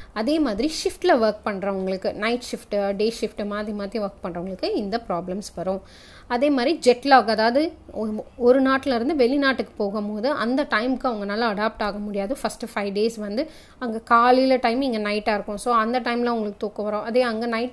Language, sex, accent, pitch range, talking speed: Tamil, female, native, 205-255 Hz, 175 wpm